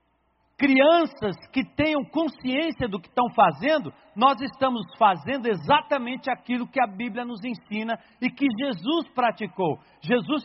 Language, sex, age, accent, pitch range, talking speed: Portuguese, male, 60-79, Brazilian, 195-270 Hz, 130 wpm